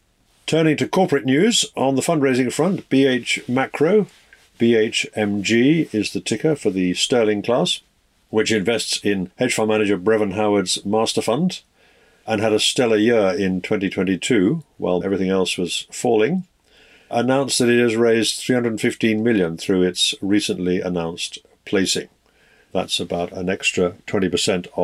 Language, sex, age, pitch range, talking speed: English, male, 50-69, 95-120 Hz, 140 wpm